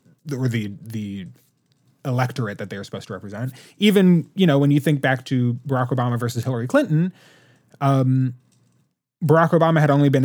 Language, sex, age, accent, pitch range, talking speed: English, male, 20-39, American, 120-150 Hz, 170 wpm